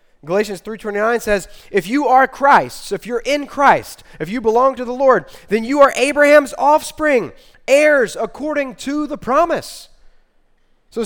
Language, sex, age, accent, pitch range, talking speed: English, male, 20-39, American, 180-280 Hz, 150 wpm